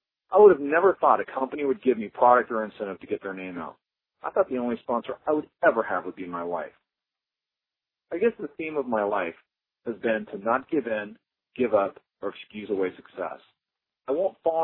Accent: American